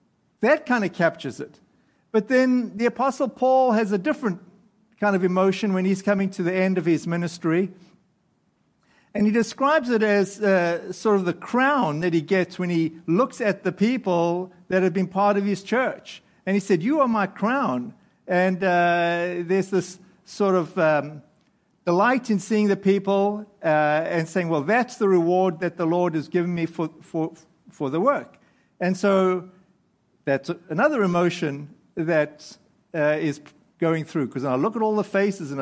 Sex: male